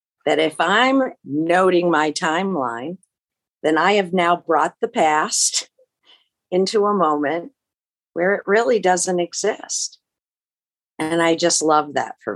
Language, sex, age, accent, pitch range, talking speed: English, female, 50-69, American, 150-185 Hz, 130 wpm